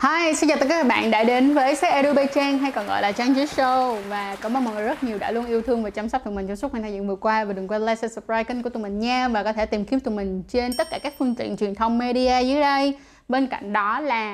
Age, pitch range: 20-39, 215-270 Hz